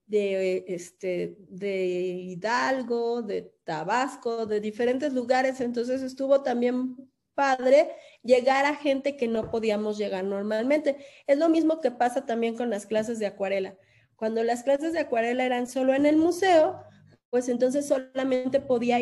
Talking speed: 145 wpm